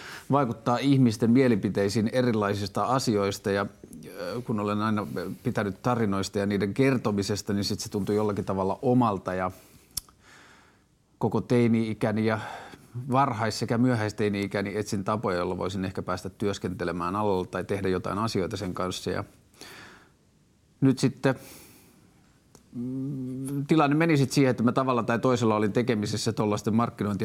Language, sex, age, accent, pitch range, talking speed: Finnish, male, 30-49, native, 100-120 Hz, 125 wpm